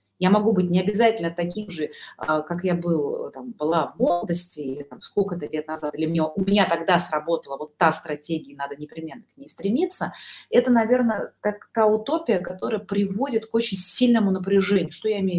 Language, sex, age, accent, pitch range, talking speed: Russian, female, 30-49, native, 155-210 Hz, 175 wpm